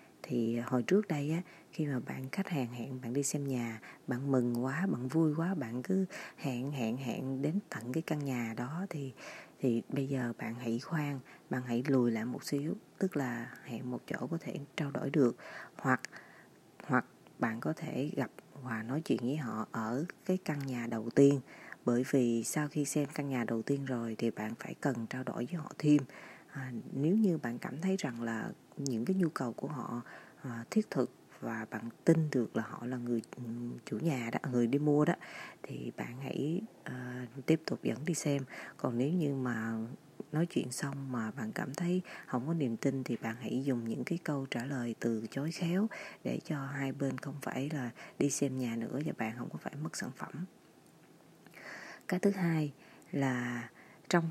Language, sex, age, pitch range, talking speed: Vietnamese, female, 20-39, 120-155 Hz, 200 wpm